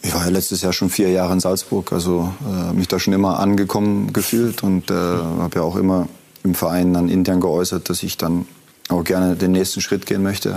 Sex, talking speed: male, 220 wpm